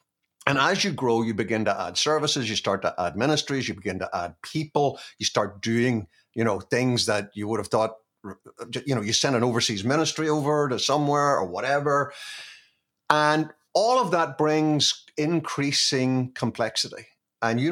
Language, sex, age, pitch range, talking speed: English, male, 50-69, 110-145 Hz, 175 wpm